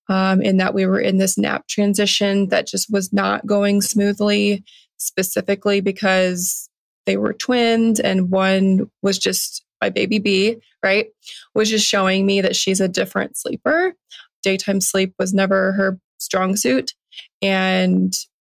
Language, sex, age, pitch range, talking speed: English, female, 20-39, 190-205 Hz, 145 wpm